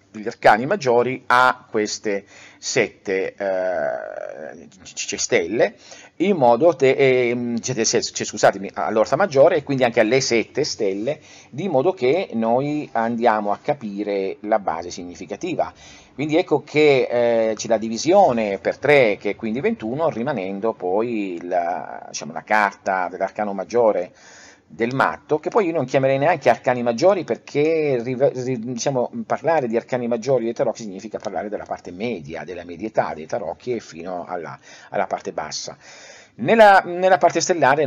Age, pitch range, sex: 40-59, 105-130 Hz, male